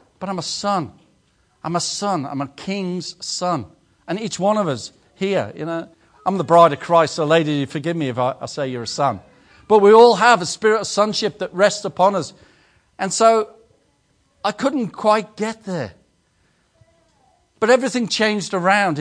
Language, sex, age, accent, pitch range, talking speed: English, male, 50-69, British, 175-220 Hz, 185 wpm